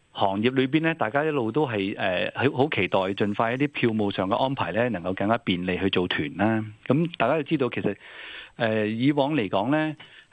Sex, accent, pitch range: male, native, 100-135 Hz